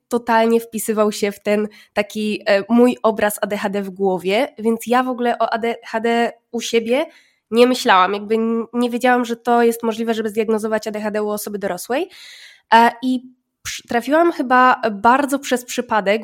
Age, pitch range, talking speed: 20-39, 225-260 Hz, 150 wpm